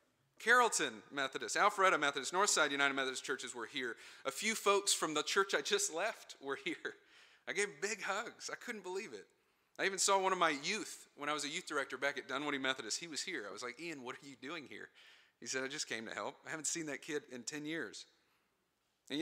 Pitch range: 125-190 Hz